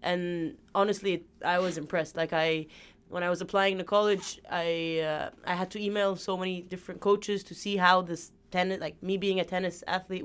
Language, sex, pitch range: English, female, 175-205 Hz